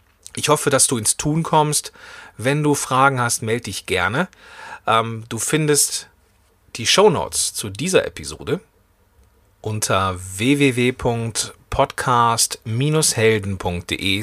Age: 40-59